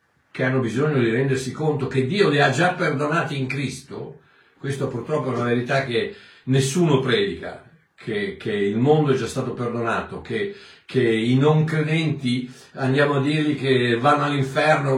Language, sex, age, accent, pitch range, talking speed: Italian, male, 60-79, native, 135-185 Hz, 165 wpm